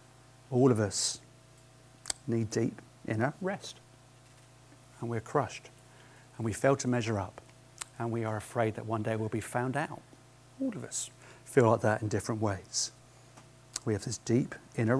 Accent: British